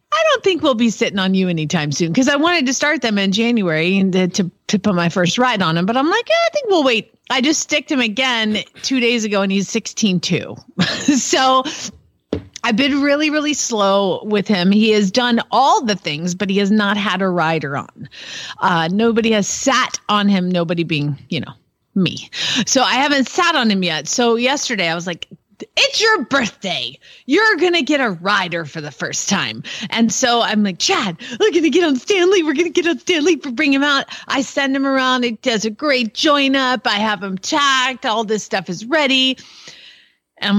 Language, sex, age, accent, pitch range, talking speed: English, female, 30-49, American, 195-285 Hz, 220 wpm